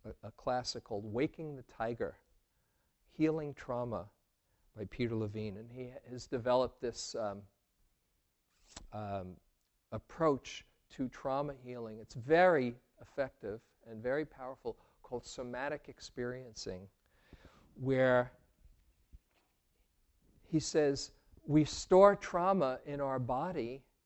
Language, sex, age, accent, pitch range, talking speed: English, male, 50-69, American, 110-140 Hz, 100 wpm